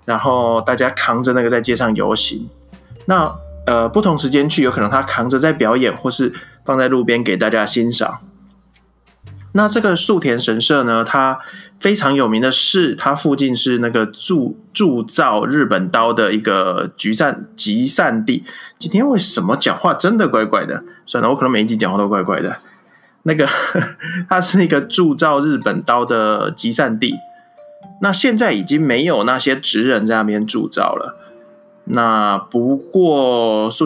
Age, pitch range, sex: 20-39, 115-175 Hz, male